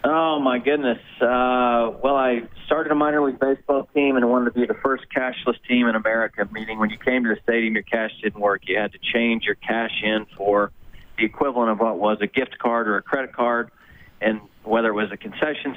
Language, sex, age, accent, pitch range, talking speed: English, male, 40-59, American, 110-125 Hz, 225 wpm